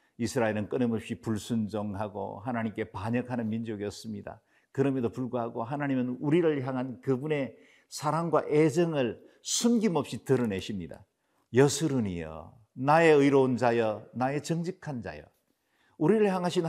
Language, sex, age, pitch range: Korean, male, 50-69, 110-150 Hz